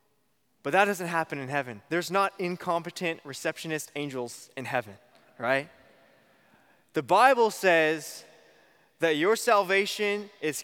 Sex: male